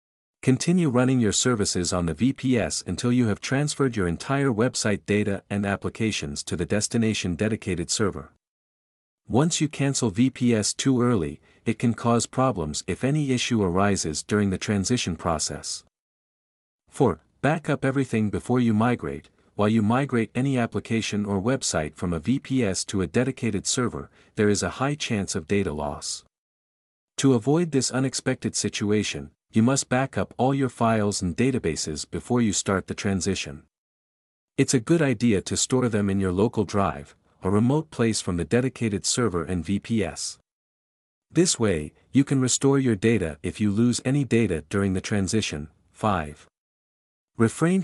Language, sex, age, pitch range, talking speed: English, male, 50-69, 90-125 Hz, 155 wpm